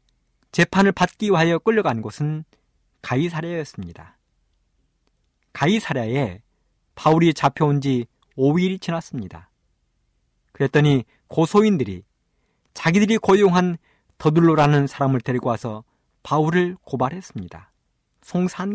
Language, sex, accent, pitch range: Korean, male, native, 105-170 Hz